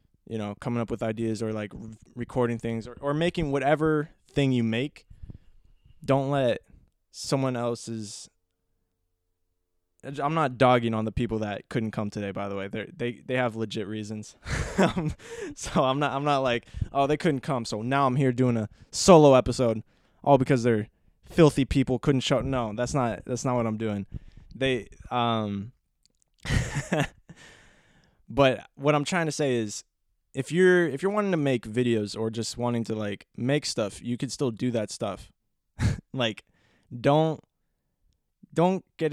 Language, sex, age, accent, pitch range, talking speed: English, male, 20-39, American, 110-135 Hz, 165 wpm